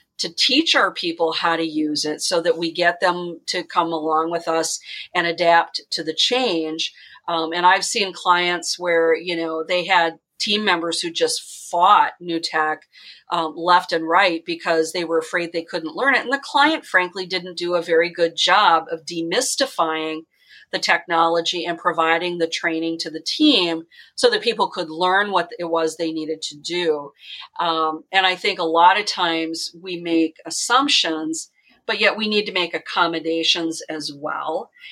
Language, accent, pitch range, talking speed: English, American, 165-190 Hz, 180 wpm